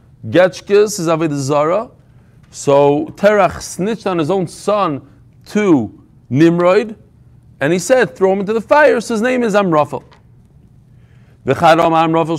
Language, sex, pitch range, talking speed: English, male, 145-210 Hz, 125 wpm